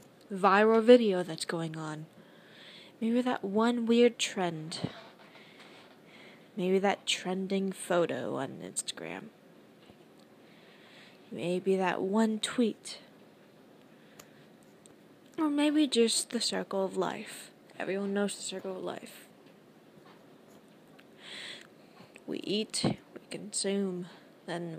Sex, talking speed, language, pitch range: female, 90 wpm, English, 185-240 Hz